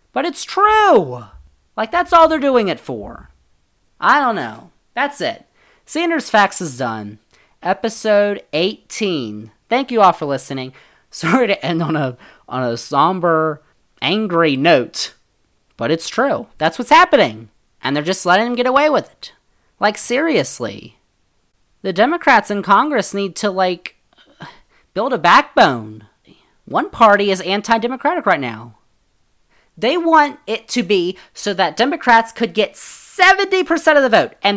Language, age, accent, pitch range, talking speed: English, 30-49, American, 145-230 Hz, 145 wpm